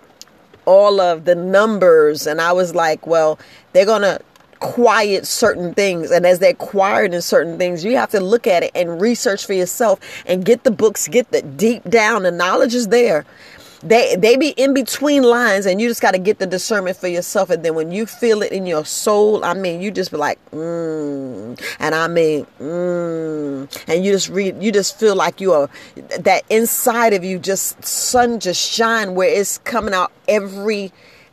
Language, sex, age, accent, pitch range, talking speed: English, female, 40-59, American, 175-225 Hz, 195 wpm